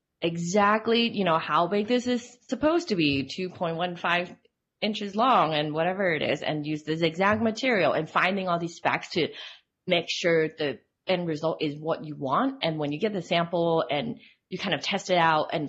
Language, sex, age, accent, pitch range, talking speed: English, female, 20-39, American, 155-190 Hz, 195 wpm